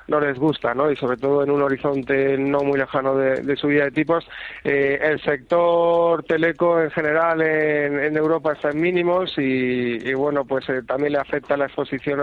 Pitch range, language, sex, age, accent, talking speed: 135-155 Hz, Spanish, male, 30-49, Spanish, 200 wpm